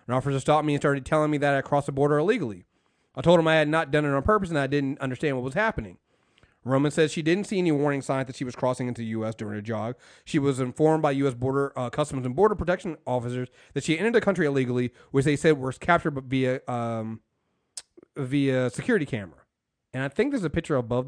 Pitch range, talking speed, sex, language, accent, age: 125-160 Hz, 235 wpm, male, English, American, 30-49